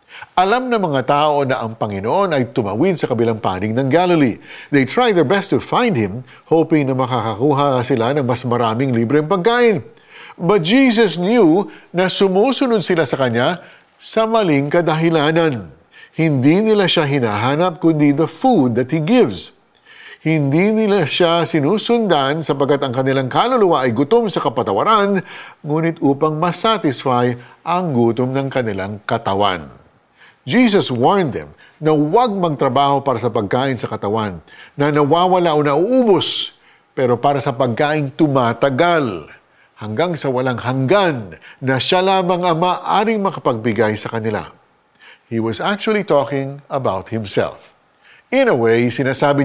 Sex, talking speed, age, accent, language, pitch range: male, 135 wpm, 50-69, native, Filipino, 125-180 Hz